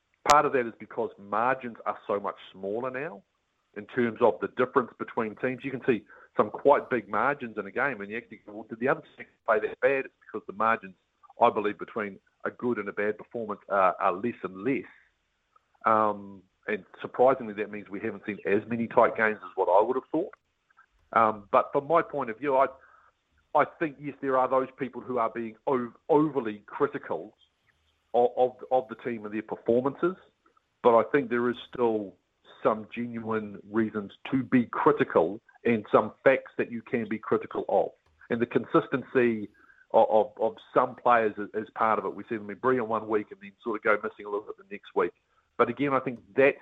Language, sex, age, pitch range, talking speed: English, male, 50-69, 105-130 Hz, 210 wpm